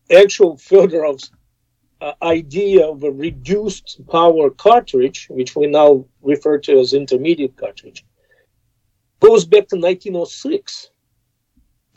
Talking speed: 105 wpm